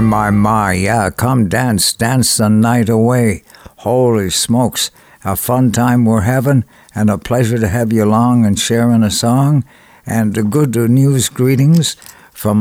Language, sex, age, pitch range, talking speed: English, male, 60-79, 100-125 Hz, 155 wpm